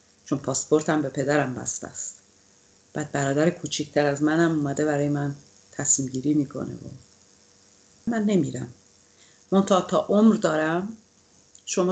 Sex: female